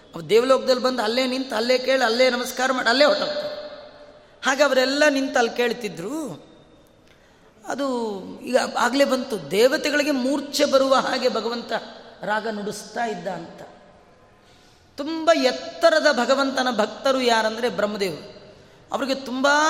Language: Kannada